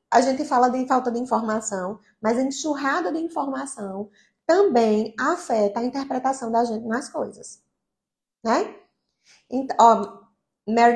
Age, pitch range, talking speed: 20-39, 220-325 Hz, 130 wpm